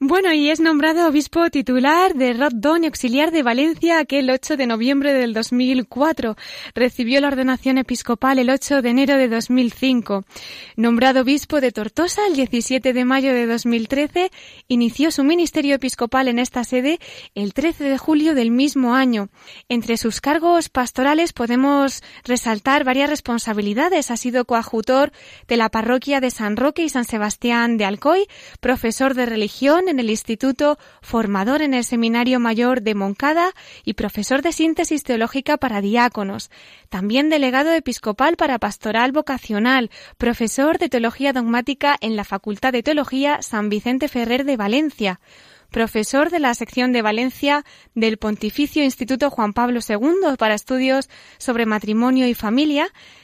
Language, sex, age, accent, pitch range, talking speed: Spanish, female, 20-39, Spanish, 235-290 Hz, 150 wpm